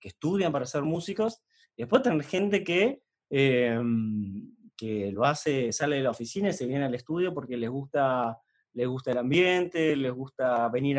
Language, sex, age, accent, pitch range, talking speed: Spanish, male, 20-39, Argentinian, 135-180 Hz, 175 wpm